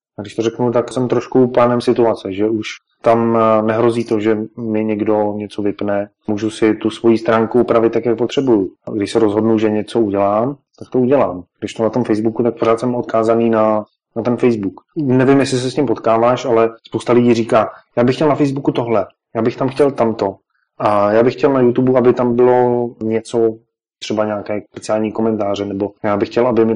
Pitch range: 110-125 Hz